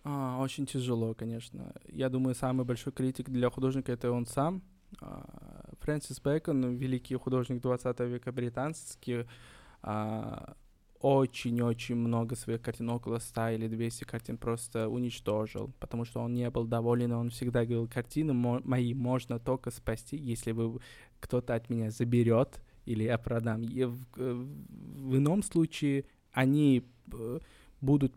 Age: 20-39